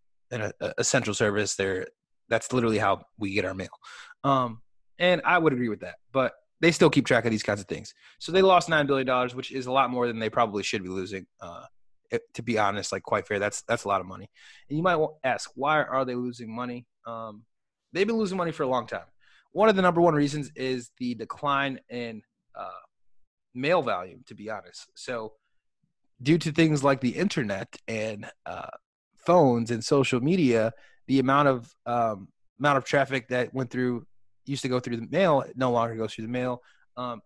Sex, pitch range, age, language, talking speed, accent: male, 110-135 Hz, 20-39, English, 210 wpm, American